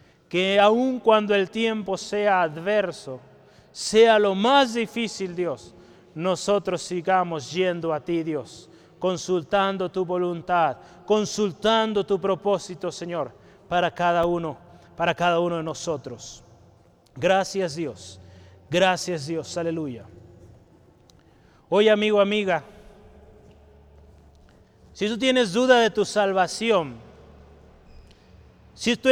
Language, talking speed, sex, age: Spanish, 105 wpm, male, 30-49